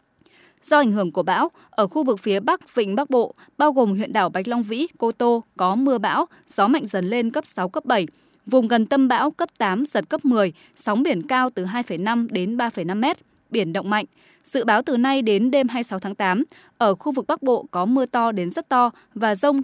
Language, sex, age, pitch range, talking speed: Vietnamese, female, 20-39, 210-280 Hz, 230 wpm